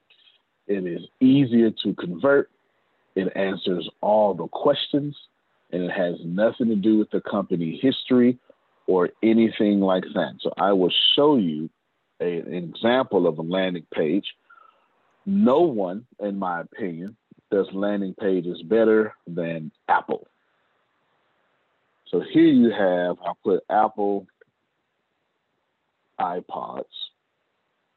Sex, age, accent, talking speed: male, 50-69, American, 115 wpm